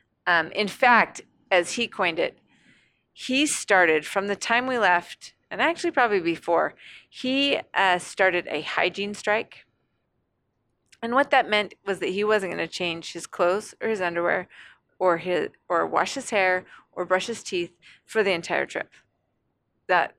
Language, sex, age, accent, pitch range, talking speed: English, female, 30-49, American, 175-225 Hz, 165 wpm